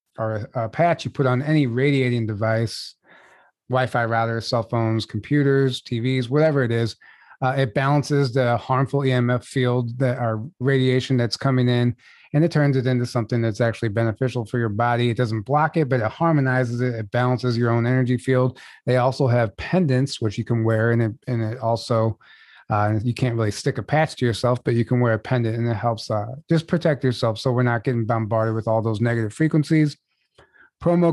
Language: English